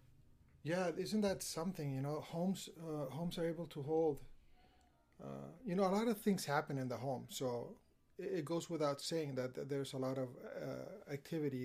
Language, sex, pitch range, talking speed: English, male, 130-160 Hz, 195 wpm